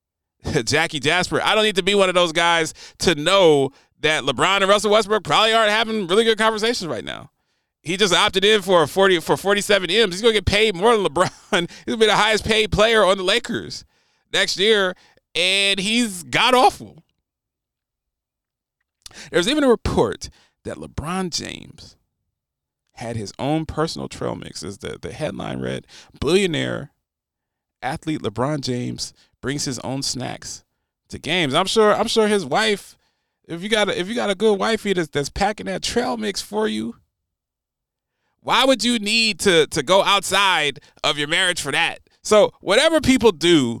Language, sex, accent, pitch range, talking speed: English, male, American, 155-210 Hz, 175 wpm